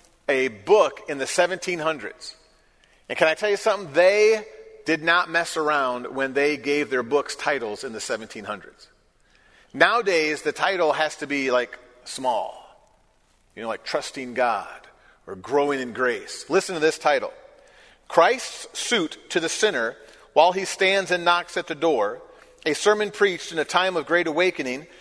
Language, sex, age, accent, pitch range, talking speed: English, male, 40-59, American, 155-205 Hz, 165 wpm